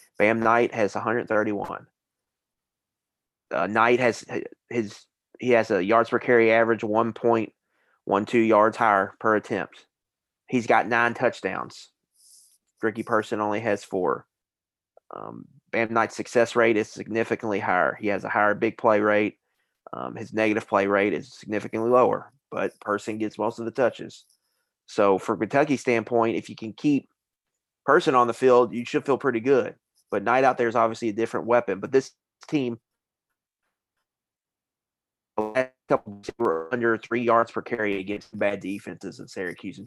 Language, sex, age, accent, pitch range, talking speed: English, male, 30-49, American, 105-120 Hz, 150 wpm